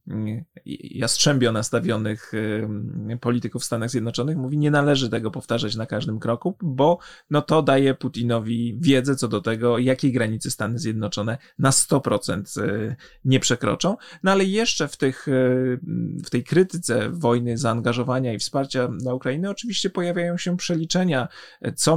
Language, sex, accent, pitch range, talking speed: Polish, male, native, 115-135 Hz, 135 wpm